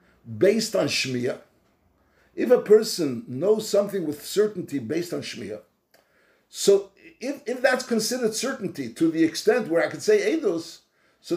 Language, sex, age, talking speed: English, male, 60-79, 150 wpm